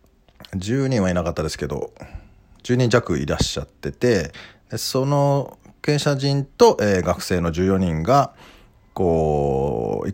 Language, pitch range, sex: Japanese, 80-105 Hz, male